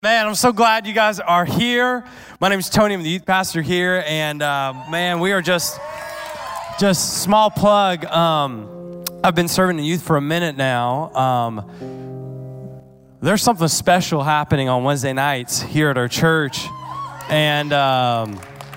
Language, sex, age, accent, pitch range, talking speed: English, male, 20-39, American, 135-185 Hz, 160 wpm